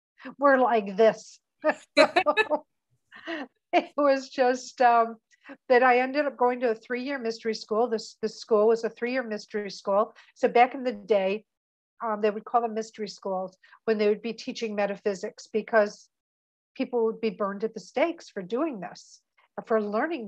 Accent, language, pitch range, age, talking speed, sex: American, English, 205-235 Hz, 60-79, 170 wpm, female